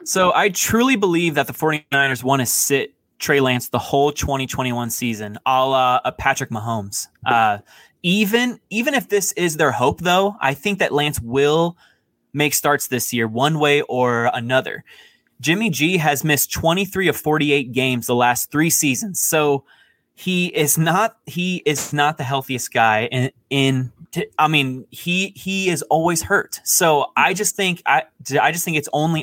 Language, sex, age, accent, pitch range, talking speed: English, male, 20-39, American, 130-170 Hz, 170 wpm